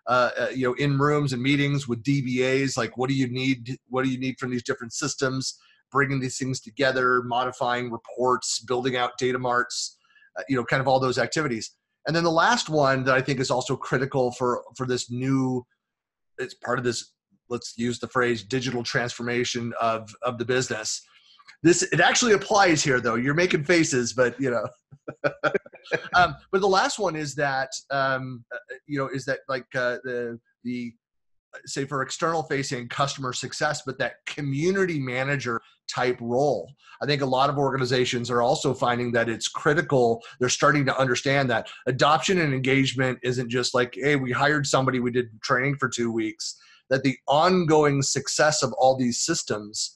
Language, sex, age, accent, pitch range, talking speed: English, male, 30-49, American, 125-145 Hz, 180 wpm